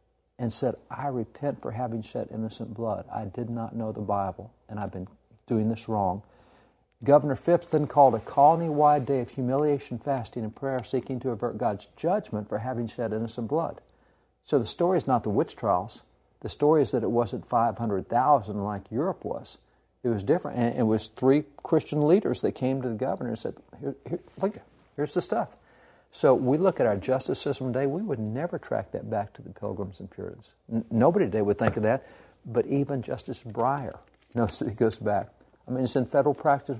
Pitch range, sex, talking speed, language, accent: 115-140 Hz, male, 200 wpm, English, American